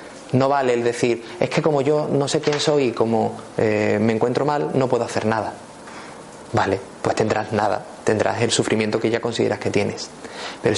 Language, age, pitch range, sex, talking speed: Spanish, 30-49, 115-135 Hz, male, 195 wpm